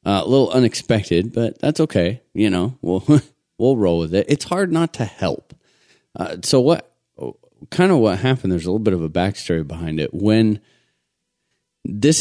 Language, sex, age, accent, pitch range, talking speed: English, male, 30-49, American, 85-110 Hz, 180 wpm